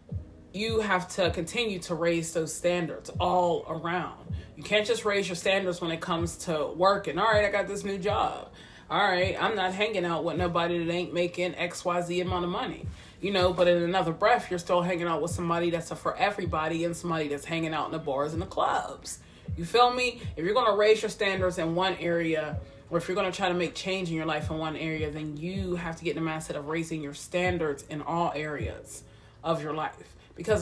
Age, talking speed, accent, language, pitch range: 30-49, 230 wpm, American, English, 160-195 Hz